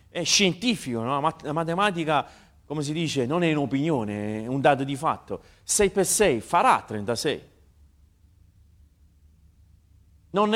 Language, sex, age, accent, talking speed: Italian, male, 40-59, native, 125 wpm